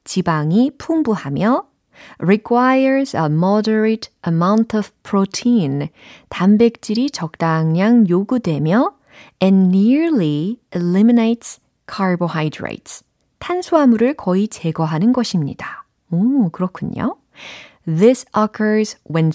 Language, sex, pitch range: Korean, female, 165-235 Hz